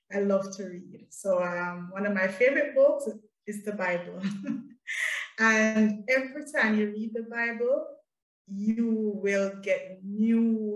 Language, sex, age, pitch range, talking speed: English, female, 20-39, 190-235 Hz, 140 wpm